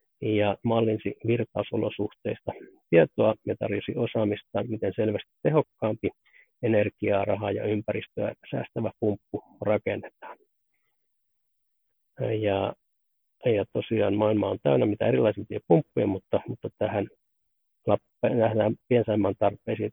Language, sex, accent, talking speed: Finnish, male, native, 95 wpm